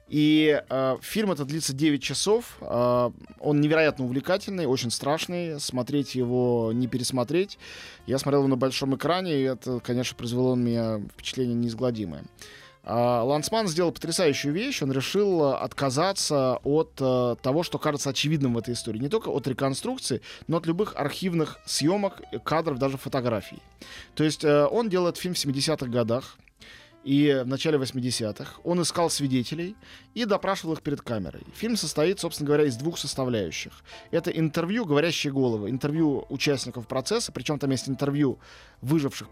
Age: 20-39